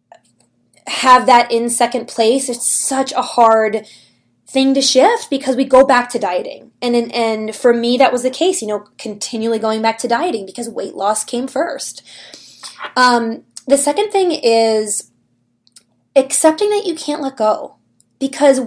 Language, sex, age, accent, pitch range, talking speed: English, female, 20-39, American, 210-265 Hz, 165 wpm